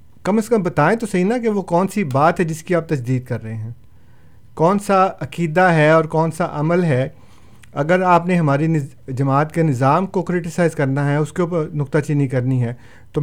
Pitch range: 135-170 Hz